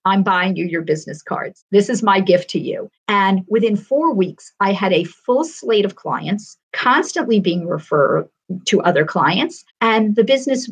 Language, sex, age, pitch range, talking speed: English, female, 50-69, 185-235 Hz, 180 wpm